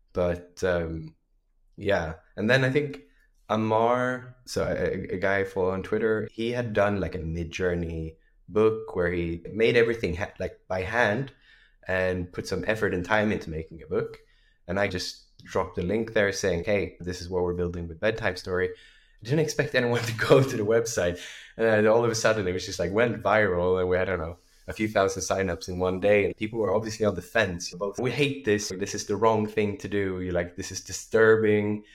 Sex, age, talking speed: male, 20-39, 210 wpm